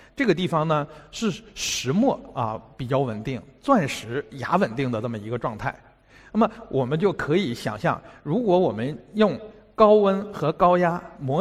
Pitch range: 130-190 Hz